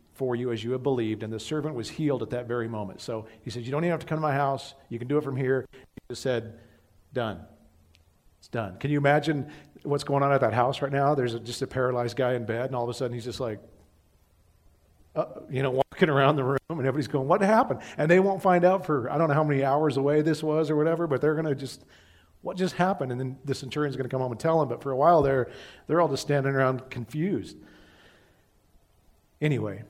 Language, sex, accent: English, male, American